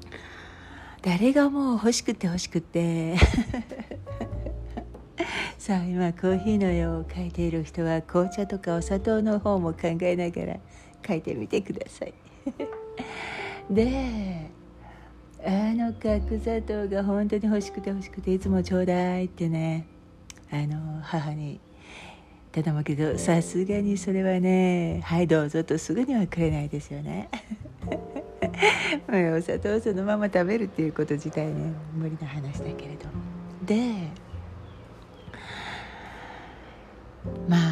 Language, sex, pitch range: Japanese, female, 145-205 Hz